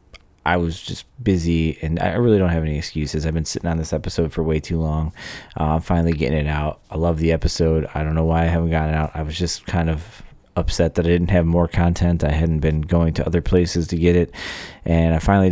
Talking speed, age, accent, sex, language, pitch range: 250 wpm, 20-39, American, male, English, 80-90 Hz